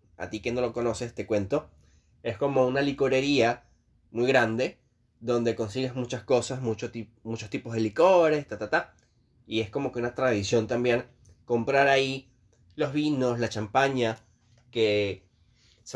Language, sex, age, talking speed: Spanish, male, 20-39, 160 wpm